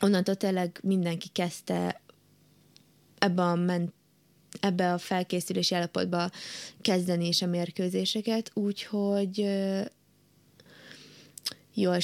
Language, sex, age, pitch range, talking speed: Hungarian, female, 20-39, 175-190 Hz, 85 wpm